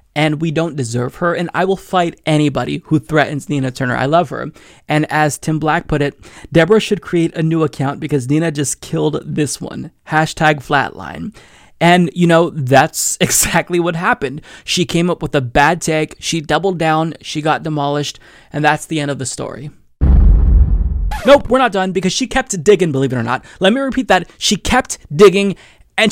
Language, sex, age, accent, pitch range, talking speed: English, male, 20-39, American, 155-195 Hz, 195 wpm